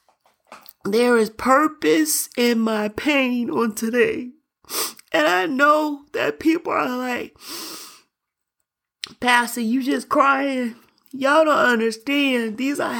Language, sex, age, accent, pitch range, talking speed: English, male, 40-59, American, 250-310 Hz, 110 wpm